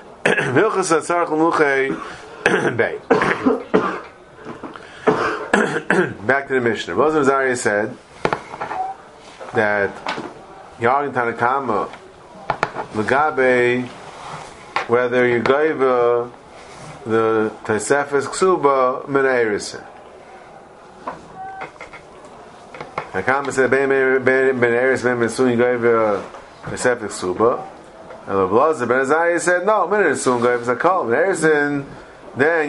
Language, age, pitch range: English, 30-49, 125-160 Hz